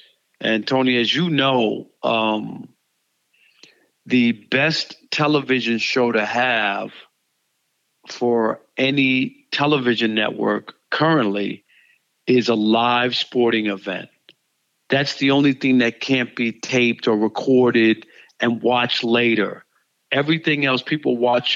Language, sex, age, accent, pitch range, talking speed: English, male, 50-69, American, 120-140 Hz, 110 wpm